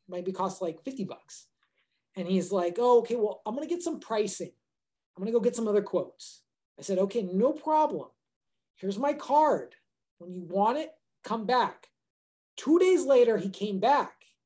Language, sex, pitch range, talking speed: English, male, 190-250 Hz, 190 wpm